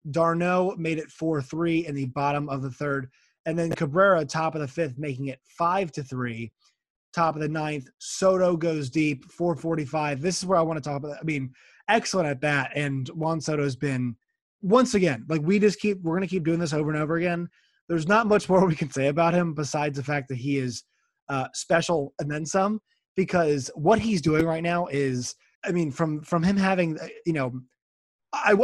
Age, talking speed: 20-39, 215 wpm